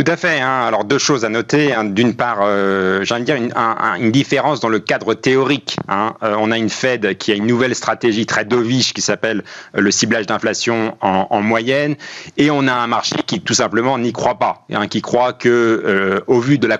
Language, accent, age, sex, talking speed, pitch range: French, French, 40-59, male, 230 wpm, 110-140 Hz